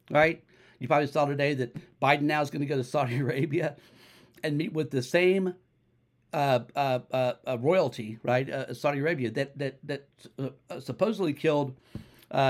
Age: 60-79